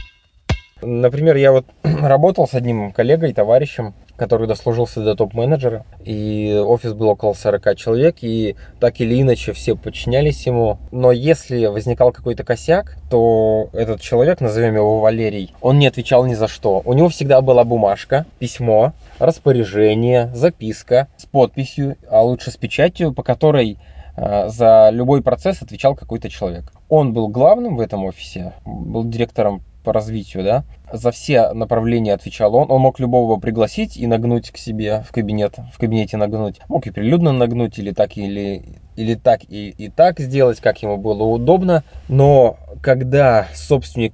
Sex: male